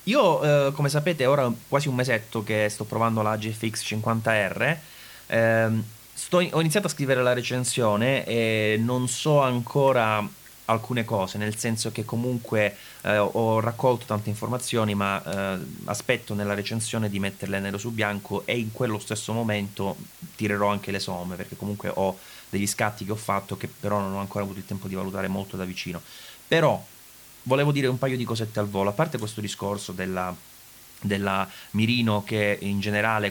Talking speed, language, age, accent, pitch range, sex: 175 wpm, English, 30-49, Italian, 100-120 Hz, male